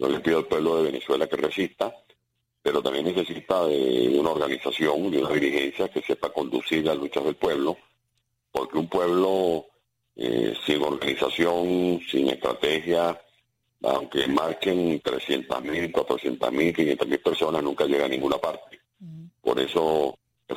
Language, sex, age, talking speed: Spanish, male, 40-59, 135 wpm